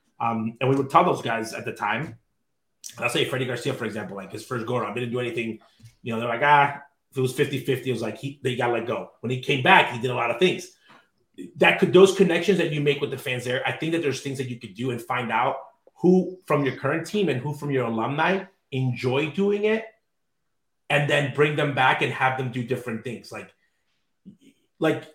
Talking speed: 240 wpm